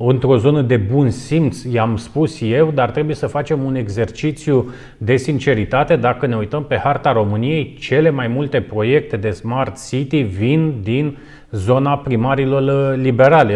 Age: 30-49